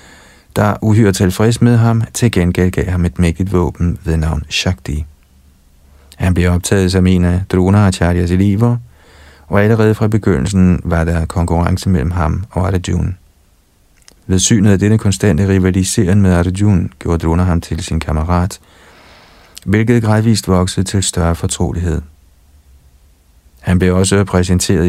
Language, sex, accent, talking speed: Danish, male, native, 140 wpm